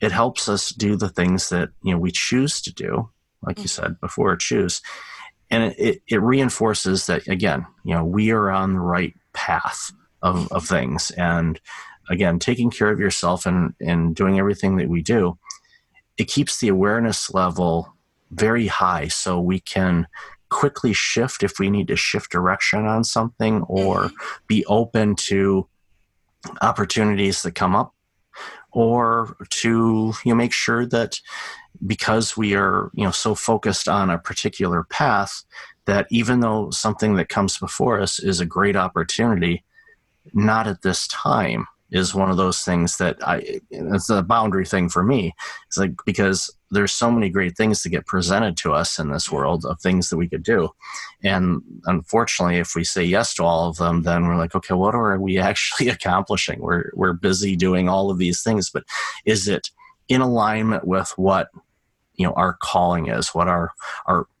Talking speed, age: 175 wpm, 30-49